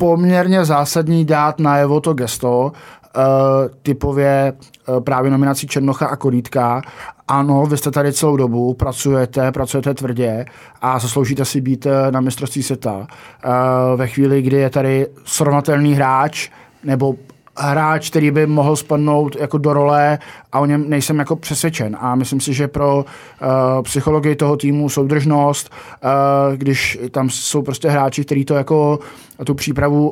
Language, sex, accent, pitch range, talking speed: Czech, male, native, 130-150 Hz, 140 wpm